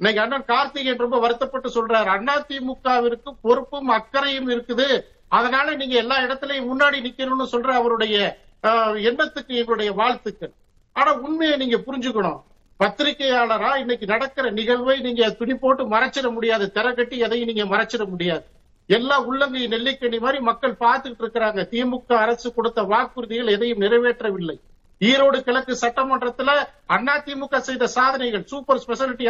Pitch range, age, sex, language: 230-270 Hz, 50-69, male, Tamil